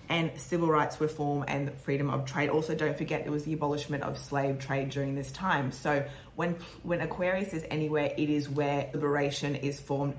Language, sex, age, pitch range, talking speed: English, female, 20-39, 140-155 Hz, 195 wpm